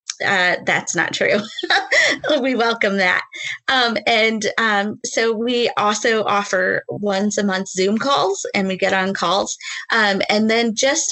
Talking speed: 150 wpm